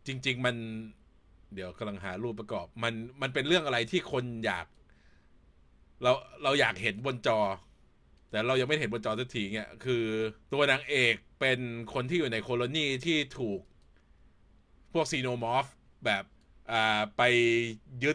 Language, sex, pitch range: Thai, male, 95-130 Hz